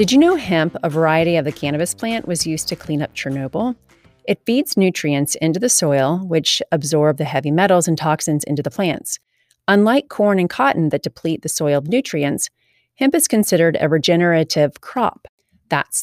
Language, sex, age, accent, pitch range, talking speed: English, female, 30-49, American, 155-200 Hz, 185 wpm